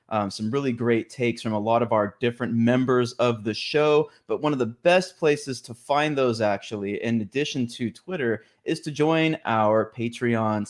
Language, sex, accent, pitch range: English, male, American, 115-135 Hz